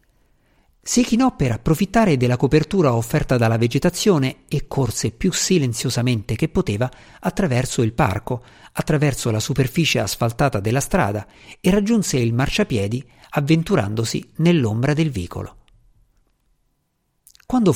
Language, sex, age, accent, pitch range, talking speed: Italian, male, 50-69, native, 115-180 Hz, 110 wpm